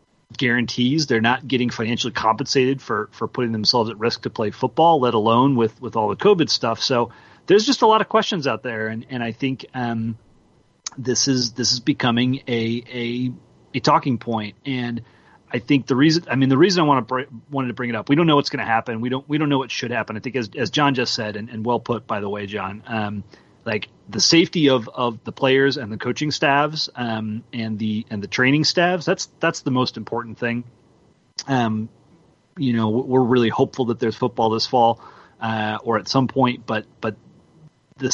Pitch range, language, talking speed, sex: 115-140 Hz, English, 220 wpm, male